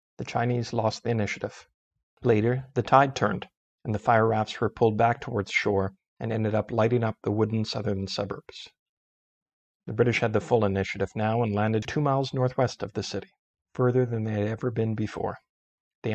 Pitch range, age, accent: 105-120 Hz, 50-69, American